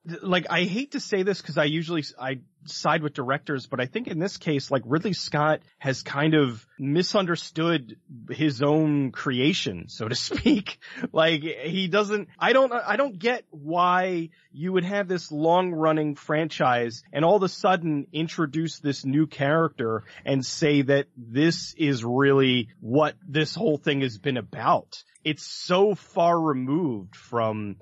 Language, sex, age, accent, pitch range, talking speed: English, male, 30-49, American, 130-165 Hz, 160 wpm